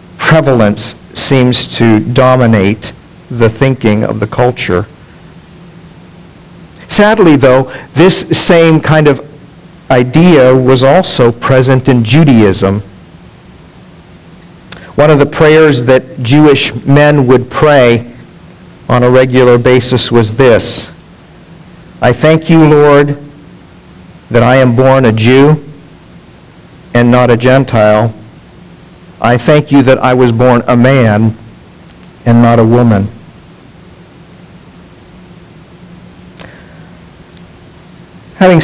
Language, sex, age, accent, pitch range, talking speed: English, male, 50-69, American, 115-145 Hz, 100 wpm